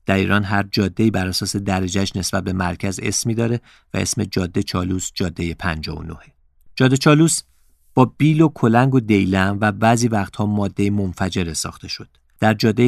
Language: Persian